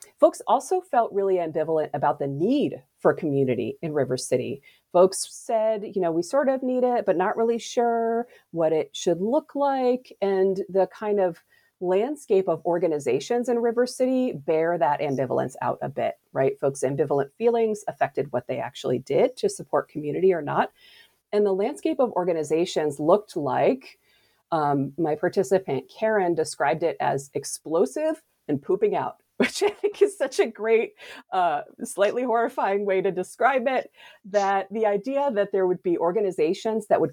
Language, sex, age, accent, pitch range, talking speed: English, female, 40-59, American, 170-250 Hz, 165 wpm